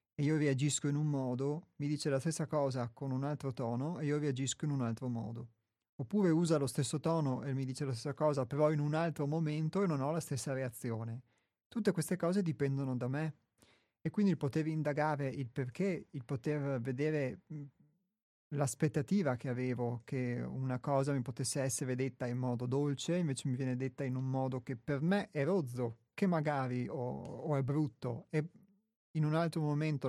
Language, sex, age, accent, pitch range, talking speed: Italian, male, 30-49, native, 130-155 Hz, 190 wpm